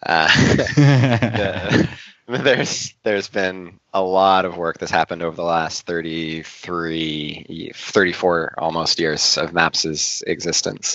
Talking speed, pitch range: 115 wpm, 75-85 Hz